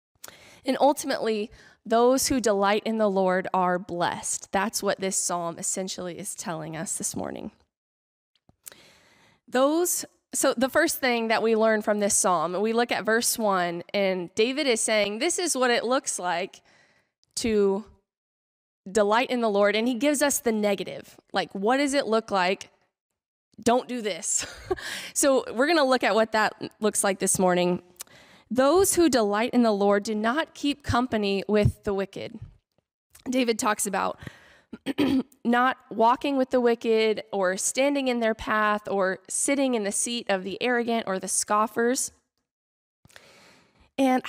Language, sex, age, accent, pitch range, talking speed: English, female, 20-39, American, 200-255 Hz, 155 wpm